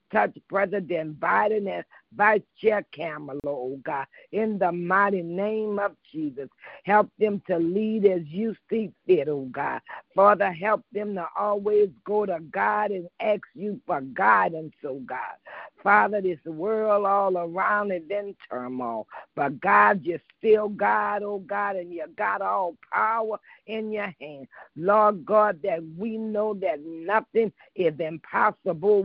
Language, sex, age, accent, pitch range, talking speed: English, female, 50-69, American, 175-210 Hz, 150 wpm